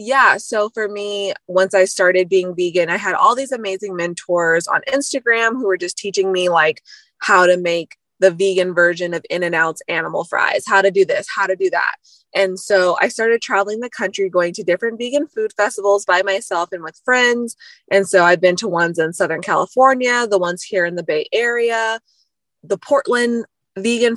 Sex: female